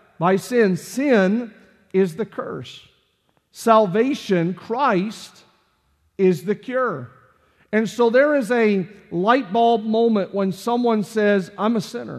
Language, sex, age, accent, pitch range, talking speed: English, male, 50-69, American, 195-235 Hz, 125 wpm